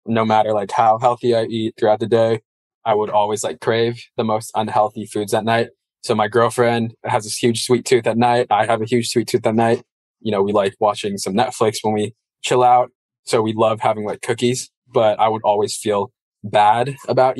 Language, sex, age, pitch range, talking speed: English, male, 20-39, 105-120 Hz, 215 wpm